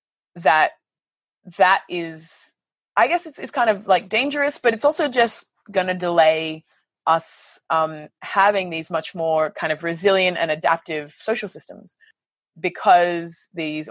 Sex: female